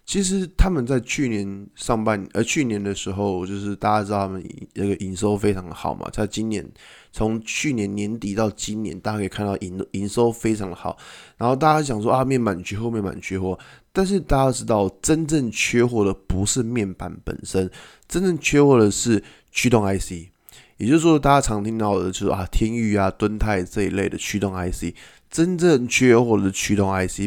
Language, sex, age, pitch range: Chinese, male, 20-39, 95-120 Hz